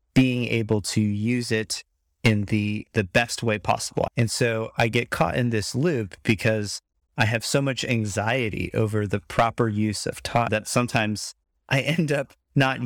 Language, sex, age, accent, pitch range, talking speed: English, male, 30-49, American, 105-125 Hz, 175 wpm